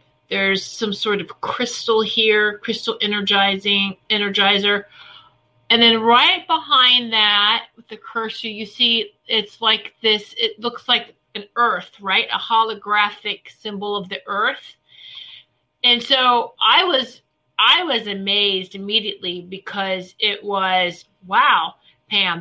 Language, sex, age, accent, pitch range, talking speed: English, female, 40-59, American, 200-240 Hz, 125 wpm